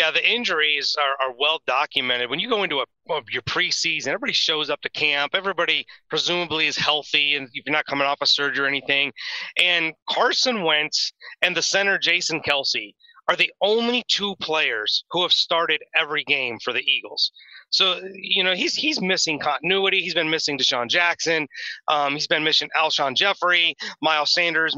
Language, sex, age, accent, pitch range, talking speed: English, male, 30-49, American, 150-195 Hz, 180 wpm